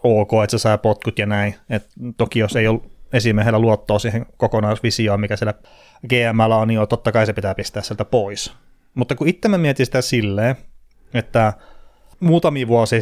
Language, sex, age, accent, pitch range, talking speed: Finnish, male, 30-49, native, 110-130 Hz, 170 wpm